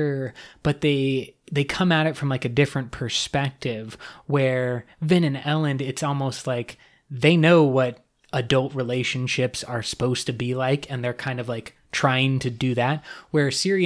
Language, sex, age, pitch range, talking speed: English, male, 20-39, 125-150 Hz, 170 wpm